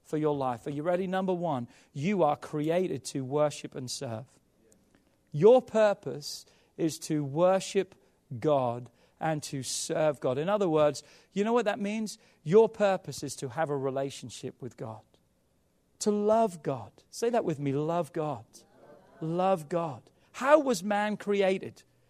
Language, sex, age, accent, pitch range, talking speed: English, male, 40-59, British, 150-220 Hz, 155 wpm